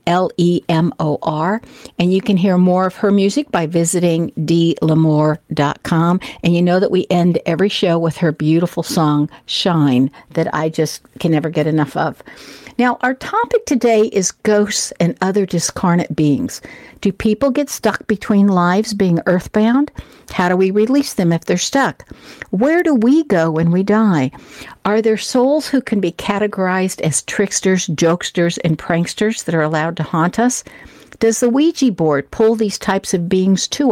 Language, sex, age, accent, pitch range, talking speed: English, female, 60-79, American, 170-225 Hz, 165 wpm